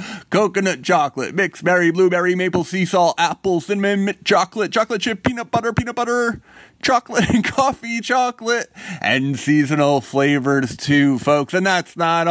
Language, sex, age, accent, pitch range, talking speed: English, male, 30-49, American, 165-210 Hz, 140 wpm